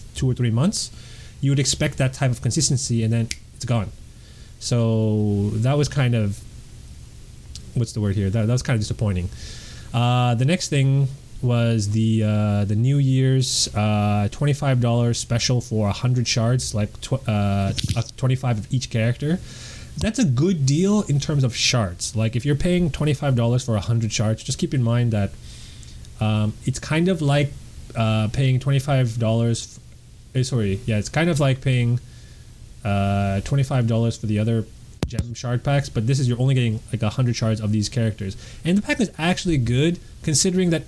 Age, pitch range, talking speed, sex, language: 20-39, 110-140 Hz, 180 wpm, male, English